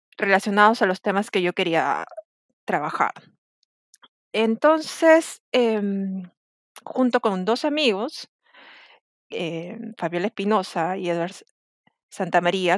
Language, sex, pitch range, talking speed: Spanish, female, 175-225 Hz, 95 wpm